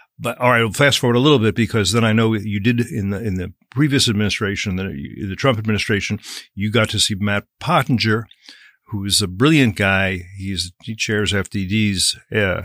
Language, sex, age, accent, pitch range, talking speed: English, male, 50-69, American, 100-120 Hz, 195 wpm